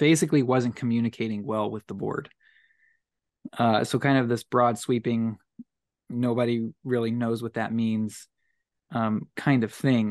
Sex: male